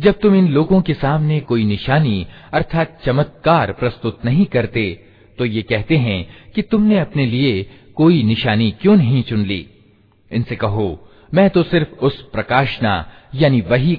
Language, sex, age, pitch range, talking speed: Hindi, male, 40-59, 100-135 Hz, 155 wpm